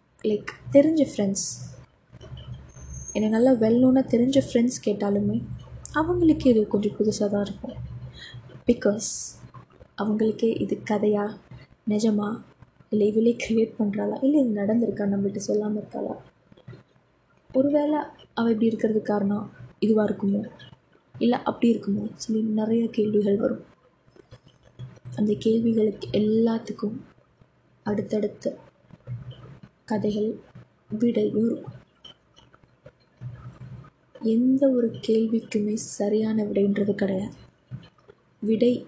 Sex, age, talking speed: female, 20-39, 90 wpm